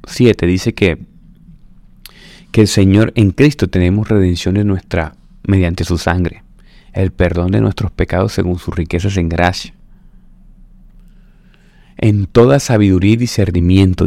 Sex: male